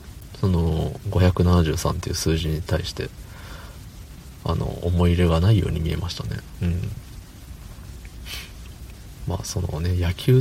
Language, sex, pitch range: Japanese, male, 80-105 Hz